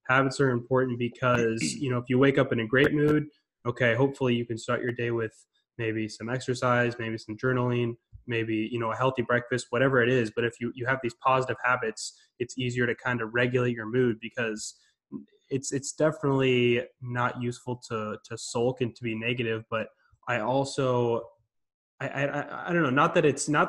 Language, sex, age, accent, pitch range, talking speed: English, male, 10-29, American, 115-130 Hz, 200 wpm